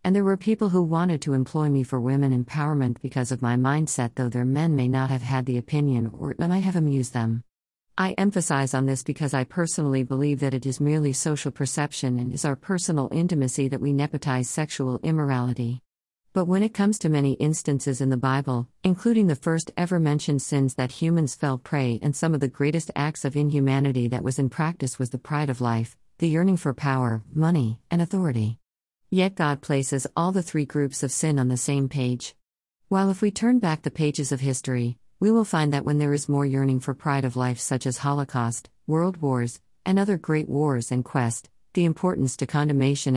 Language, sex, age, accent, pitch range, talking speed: English, female, 50-69, American, 130-155 Hz, 205 wpm